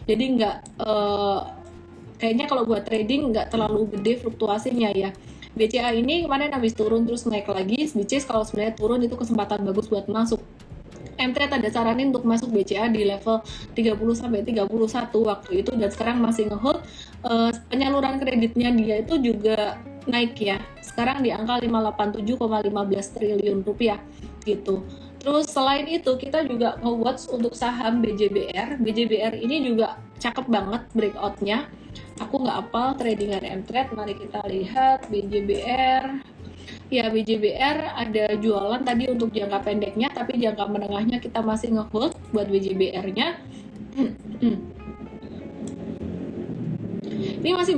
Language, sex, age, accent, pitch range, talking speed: Indonesian, female, 20-39, native, 210-245 Hz, 135 wpm